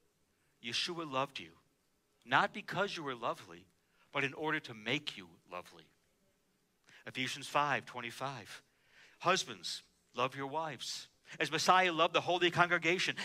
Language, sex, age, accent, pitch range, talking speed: English, male, 60-79, American, 130-195 Hz, 125 wpm